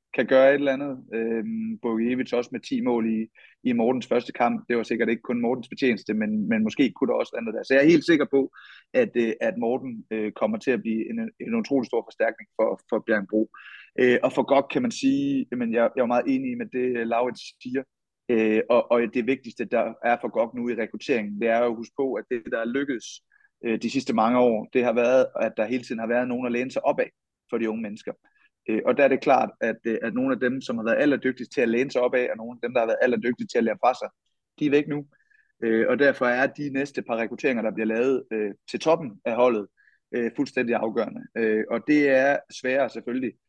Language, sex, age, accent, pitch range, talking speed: Danish, male, 30-49, native, 115-140 Hz, 235 wpm